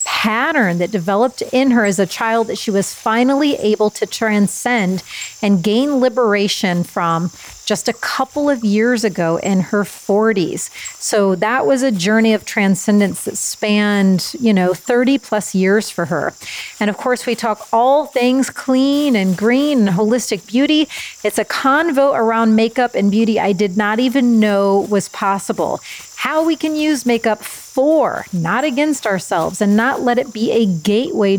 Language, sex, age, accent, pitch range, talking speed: English, female, 30-49, American, 195-260 Hz, 165 wpm